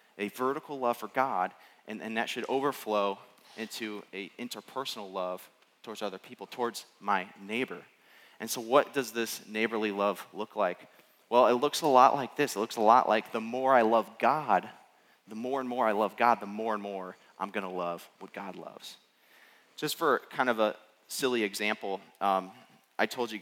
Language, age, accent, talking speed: English, 30-49, American, 190 wpm